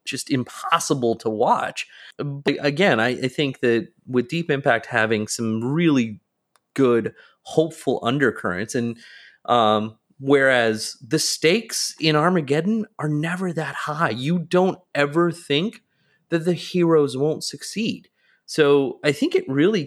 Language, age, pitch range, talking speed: English, 30-49, 115-155 Hz, 135 wpm